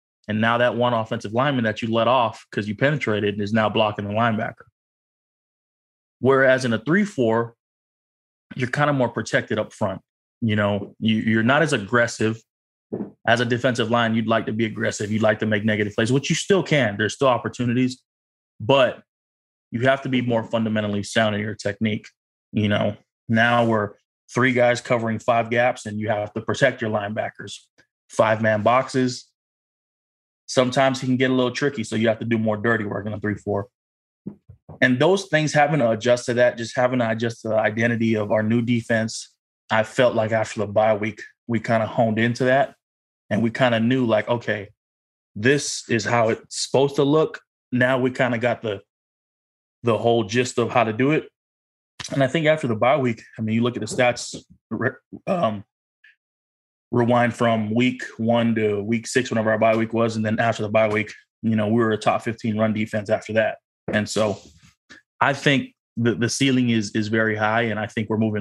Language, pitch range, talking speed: English, 110-125 Hz, 195 wpm